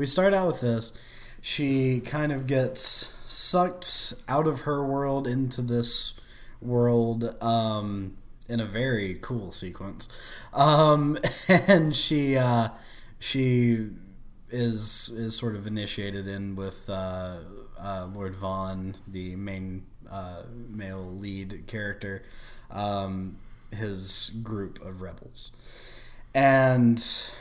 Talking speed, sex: 110 wpm, male